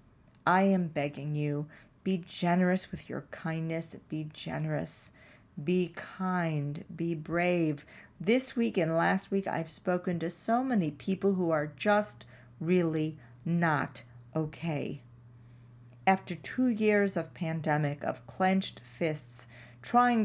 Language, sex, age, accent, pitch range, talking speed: English, female, 50-69, American, 135-180 Hz, 120 wpm